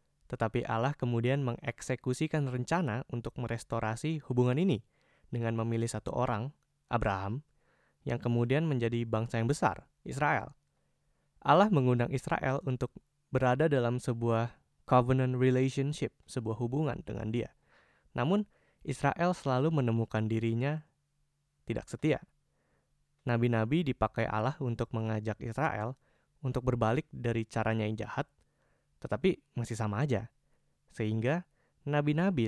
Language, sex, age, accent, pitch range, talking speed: Indonesian, male, 20-39, native, 115-140 Hz, 110 wpm